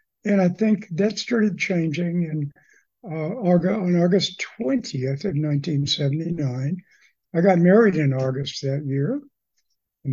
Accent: American